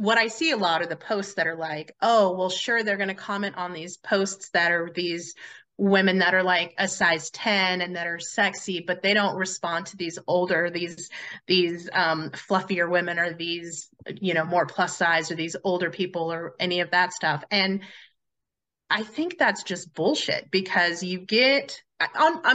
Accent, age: American, 30-49